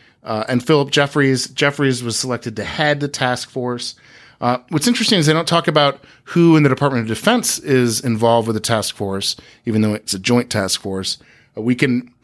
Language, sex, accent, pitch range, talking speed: English, male, American, 110-135 Hz, 205 wpm